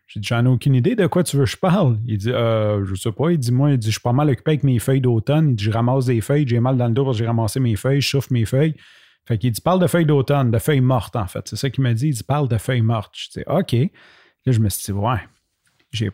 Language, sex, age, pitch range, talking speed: French, male, 30-49, 115-150 Hz, 320 wpm